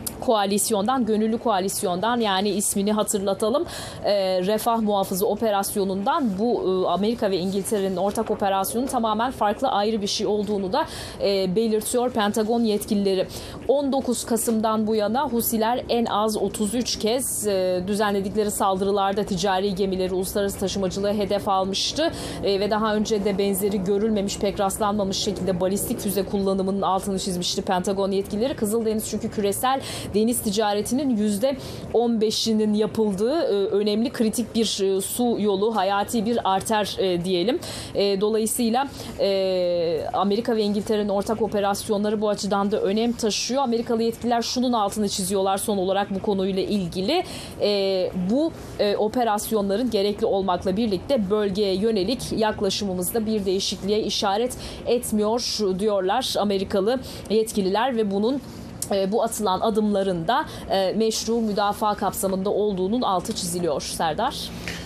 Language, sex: Turkish, female